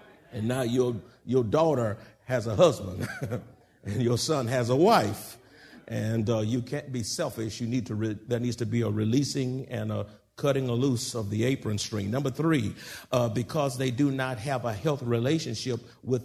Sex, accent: male, American